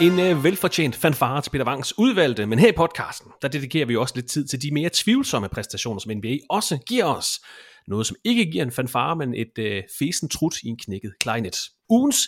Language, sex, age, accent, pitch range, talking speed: Danish, male, 30-49, native, 115-185 Hz, 215 wpm